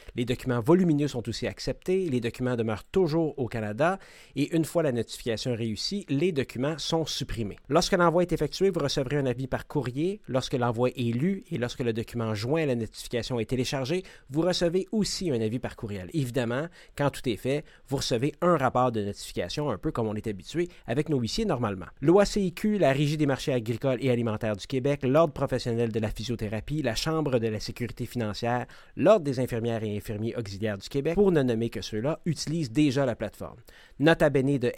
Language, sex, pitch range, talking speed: French, male, 120-155 Hz, 200 wpm